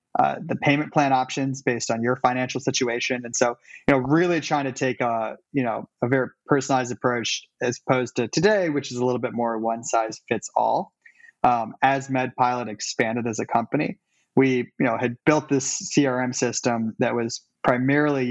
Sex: male